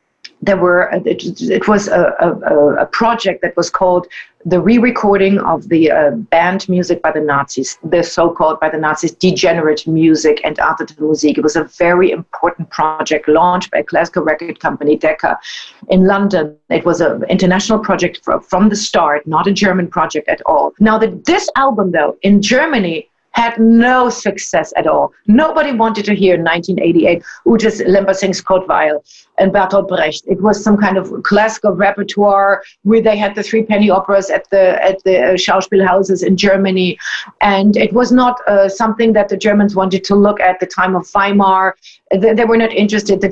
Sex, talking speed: female, 180 wpm